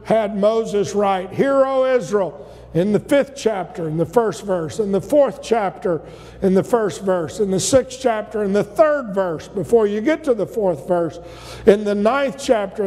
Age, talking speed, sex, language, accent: 50-69, 185 wpm, male, English, American